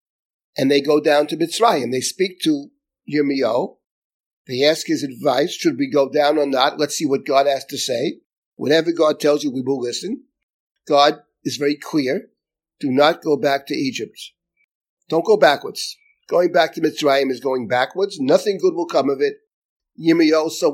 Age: 50-69